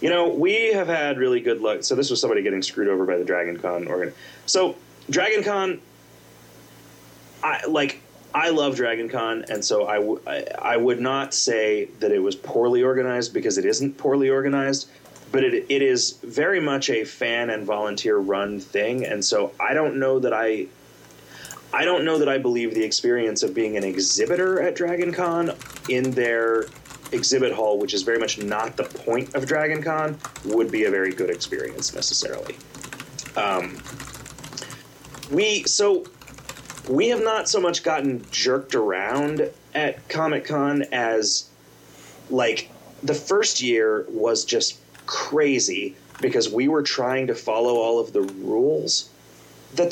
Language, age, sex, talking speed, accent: English, 30-49, male, 160 wpm, American